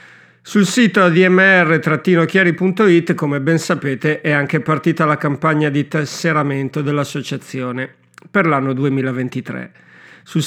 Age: 50-69